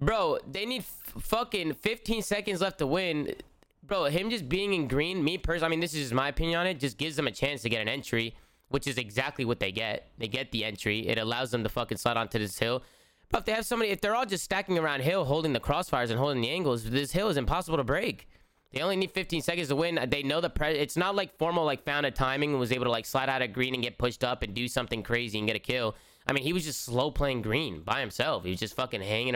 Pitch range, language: 125-160 Hz, English